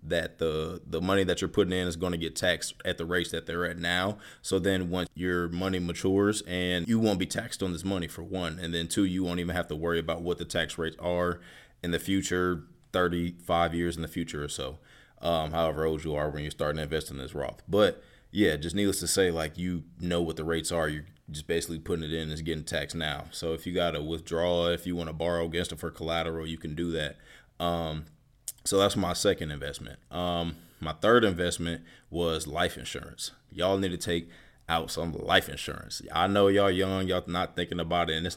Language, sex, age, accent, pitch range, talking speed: English, male, 20-39, American, 80-95 Hz, 230 wpm